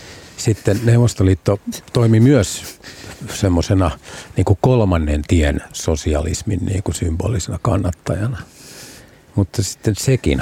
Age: 50-69